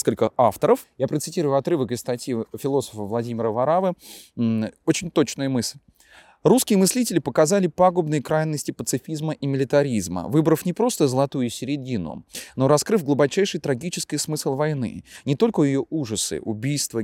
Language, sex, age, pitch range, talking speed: Russian, male, 20-39, 120-165 Hz, 130 wpm